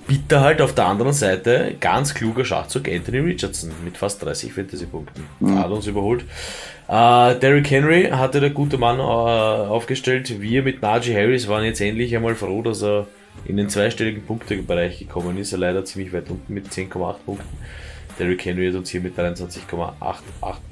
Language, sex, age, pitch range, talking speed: German, male, 20-39, 90-115 Hz, 175 wpm